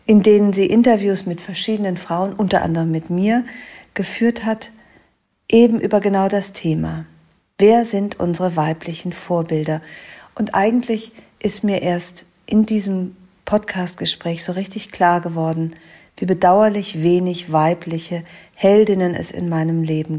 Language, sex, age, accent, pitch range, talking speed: German, female, 50-69, German, 170-210 Hz, 130 wpm